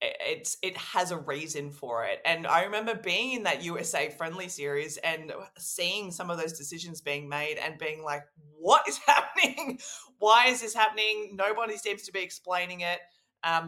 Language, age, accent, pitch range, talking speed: English, 20-39, Australian, 155-185 Hz, 180 wpm